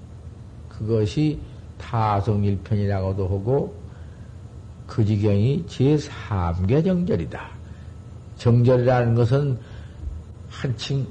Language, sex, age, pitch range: Korean, male, 50-69, 95-135 Hz